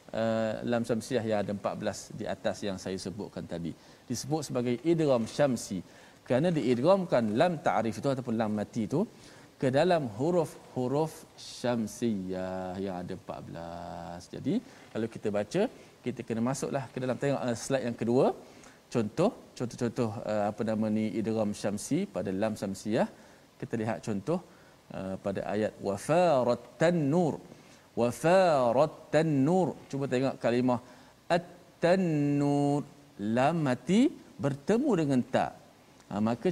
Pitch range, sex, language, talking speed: 115-170 Hz, male, Malayalam, 130 wpm